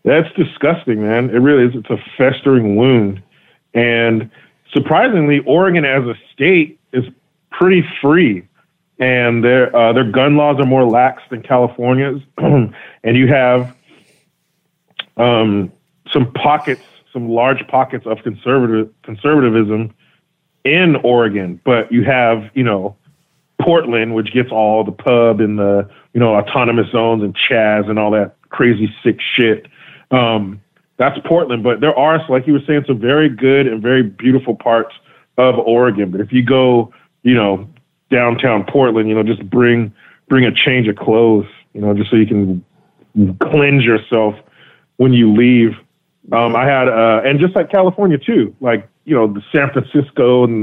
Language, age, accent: English, 40-59, American